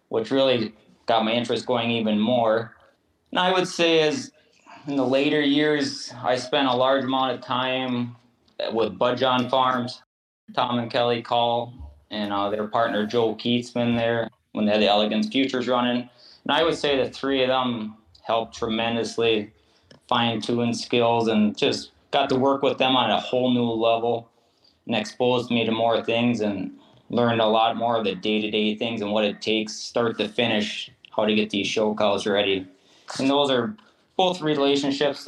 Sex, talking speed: male, 175 wpm